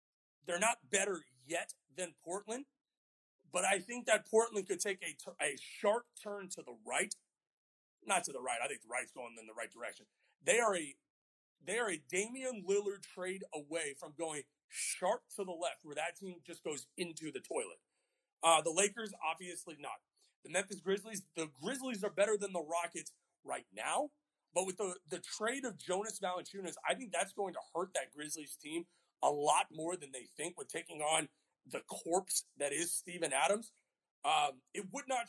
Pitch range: 170-210 Hz